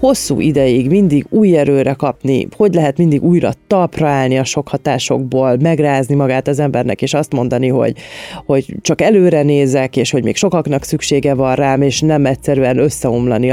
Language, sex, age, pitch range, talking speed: Hungarian, female, 30-49, 130-165 Hz, 170 wpm